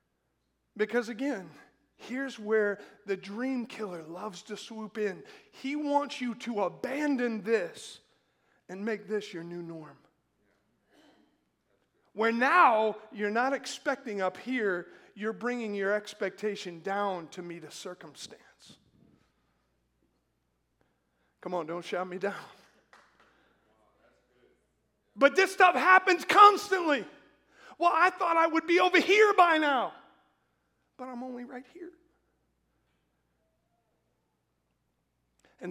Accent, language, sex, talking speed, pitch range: American, English, male, 110 wpm, 170-245 Hz